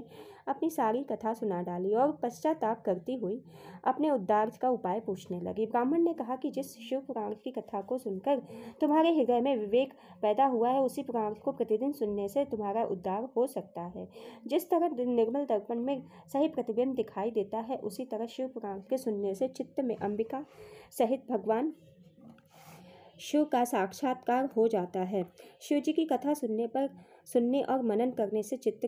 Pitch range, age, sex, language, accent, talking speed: 210-265 Hz, 20-39, female, Hindi, native, 170 wpm